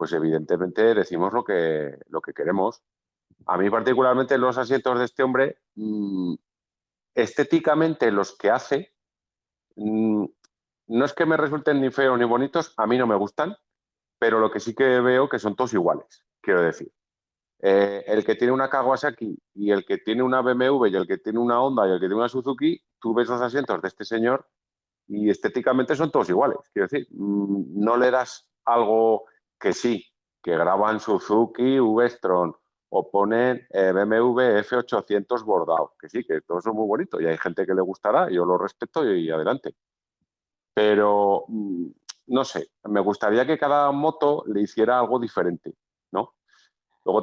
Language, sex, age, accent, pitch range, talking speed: Spanish, male, 40-59, Spanish, 100-130 Hz, 165 wpm